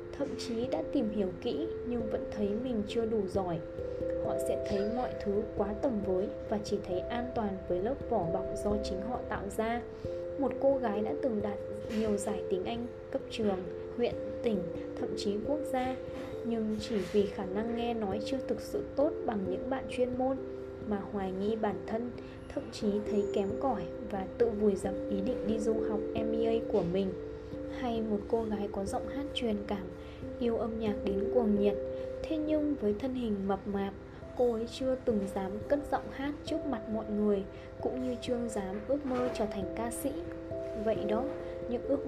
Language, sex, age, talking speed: Vietnamese, female, 20-39, 200 wpm